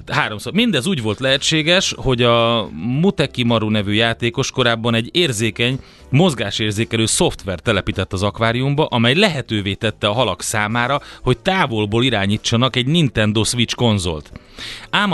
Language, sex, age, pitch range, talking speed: Hungarian, male, 30-49, 110-150 Hz, 125 wpm